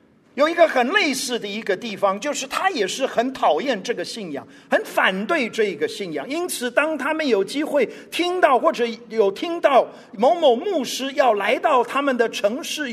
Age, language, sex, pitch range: 50-69, Chinese, male, 240-330 Hz